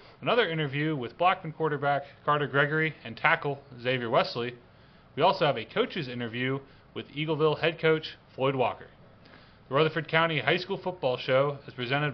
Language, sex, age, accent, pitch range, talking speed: English, male, 30-49, American, 130-165 Hz, 160 wpm